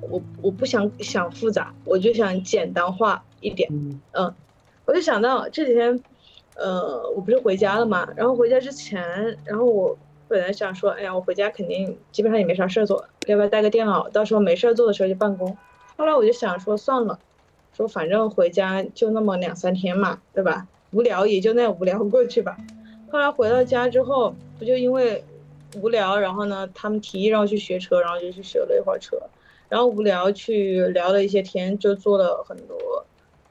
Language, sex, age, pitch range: Chinese, female, 20-39, 185-255 Hz